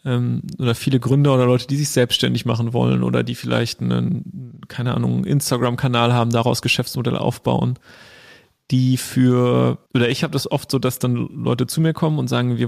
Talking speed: 180 wpm